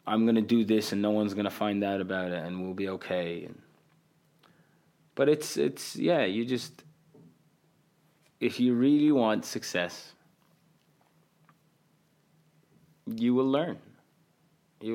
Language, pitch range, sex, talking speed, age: English, 105-160 Hz, male, 135 wpm, 20-39